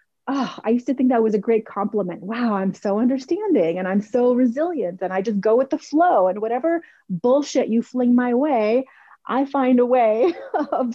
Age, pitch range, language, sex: 30-49, 220-280 Hz, English, female